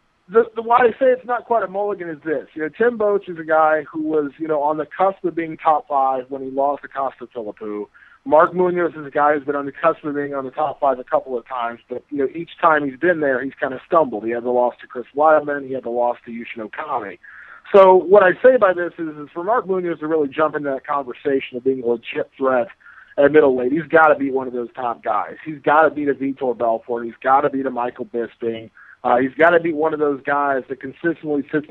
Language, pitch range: English, 135-170 Hz